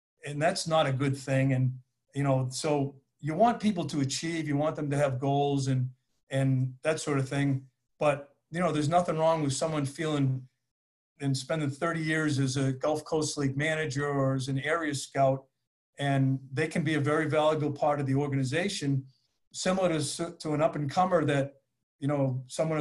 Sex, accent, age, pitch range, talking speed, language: male, American, 50-69, 135-155 Hz, 190 wpm, English